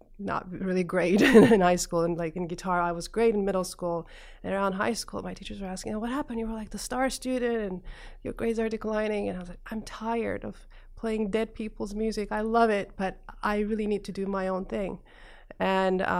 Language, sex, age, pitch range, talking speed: English, female, 30-49, 175-210 Hz, 225 wpm